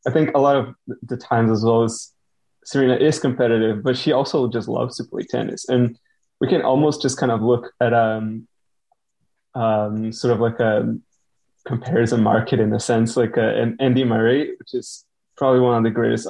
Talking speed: 195 wpm